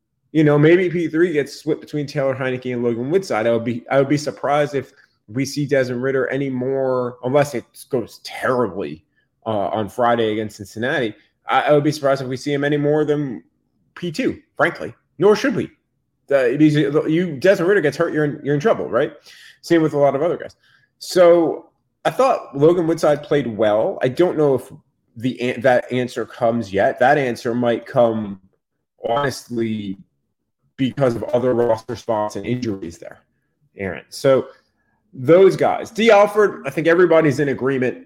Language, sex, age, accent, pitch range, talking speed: English, male, 30-49, American, 120-150 Hz, 180 wpm